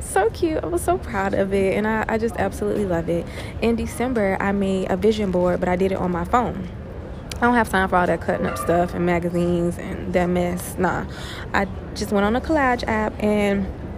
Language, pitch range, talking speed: English, 180-245 Hz, 230 wpm